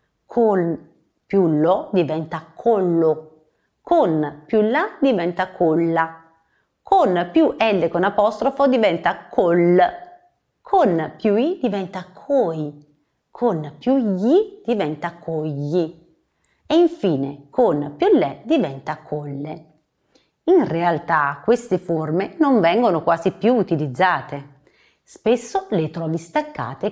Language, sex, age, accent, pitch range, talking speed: English, female, 40-59, Italian, 160-235 Hz, 105 wpm